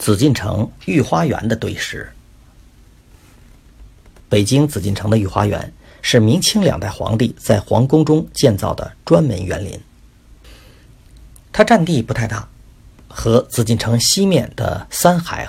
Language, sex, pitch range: Chinese, male, 105-135 Hz